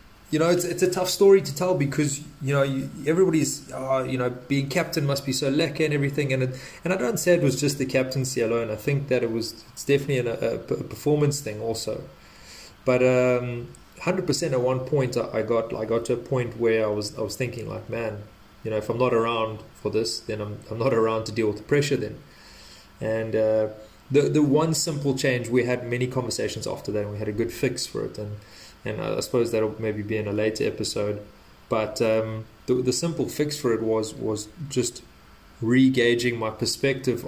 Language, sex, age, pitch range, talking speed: English, male, 20-39, 110-135 Hz, 220 wpm